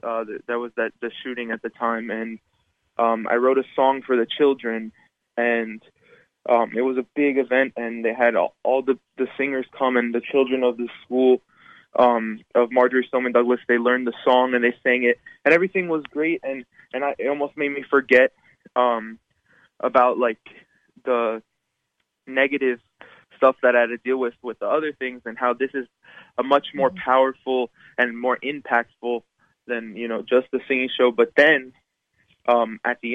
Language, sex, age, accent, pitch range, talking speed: English, male, 20-39, American, 120-130 Hz, 190 wpm